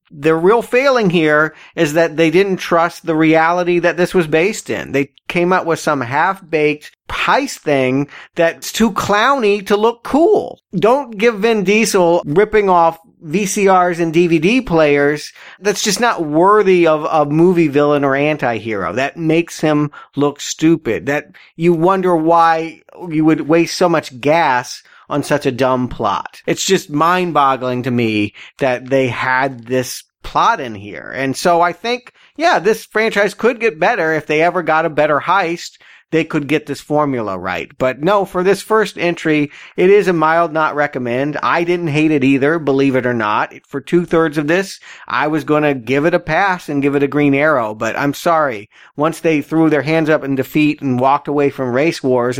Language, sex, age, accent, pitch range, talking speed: English, male, 40-59, American, 135-175 Hz, 185 wpm